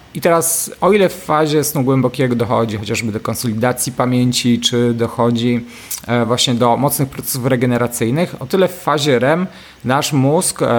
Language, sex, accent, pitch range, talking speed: Polish, male, native, 120-140 Hz, 150 wpm